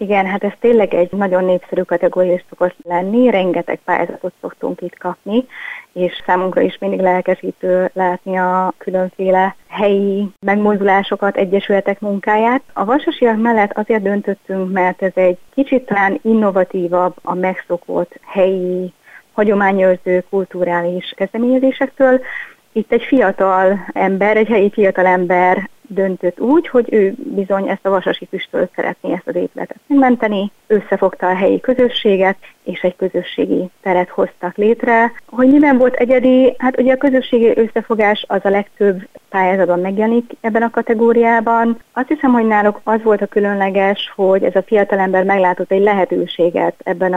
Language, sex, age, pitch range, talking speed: Hungarian, female, 30-49, 185-230 Hz, 140 wpm